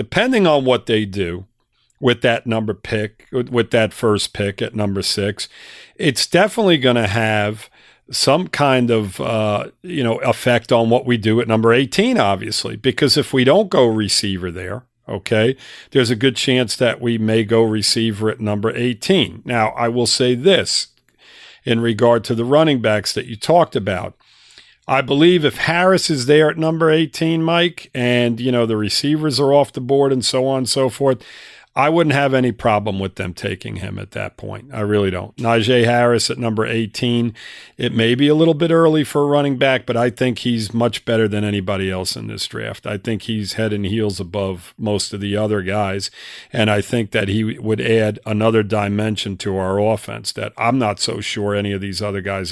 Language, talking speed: English, 200 wpm